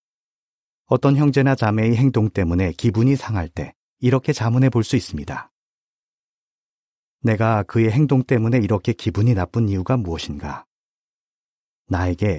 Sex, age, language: male, 40-59, Korean